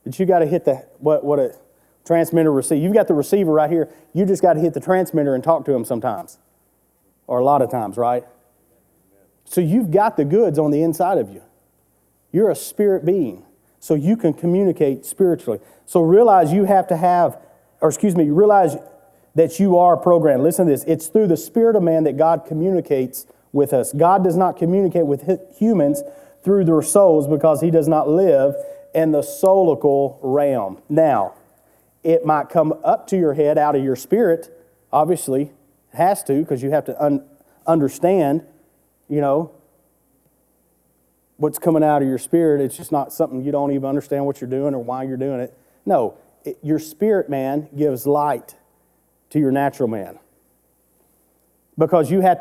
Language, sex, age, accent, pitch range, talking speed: English, male, 30-49, American, 140-175 Hz, 185 wpm